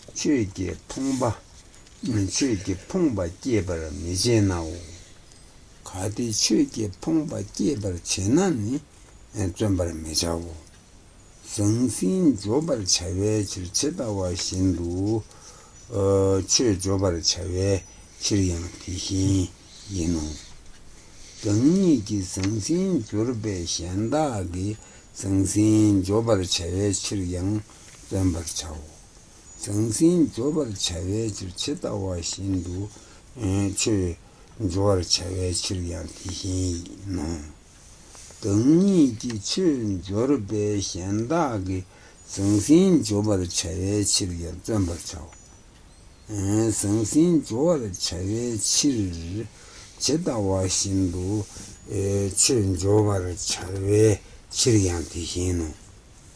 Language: Italian